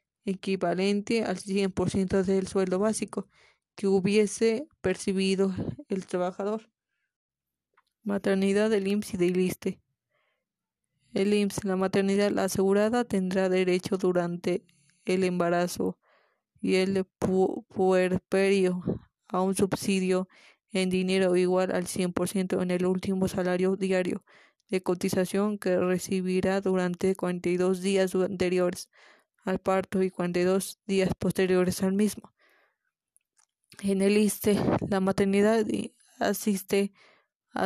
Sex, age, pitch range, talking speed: female, 20-39, 185-205 Hz, 110 wpm